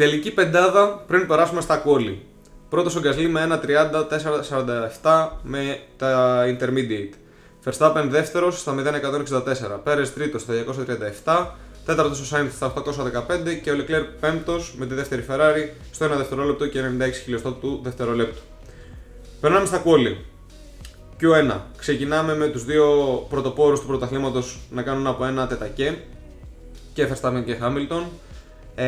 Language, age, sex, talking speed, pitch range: Greek, 20-39, male, 135 wpm, 125-150 Hz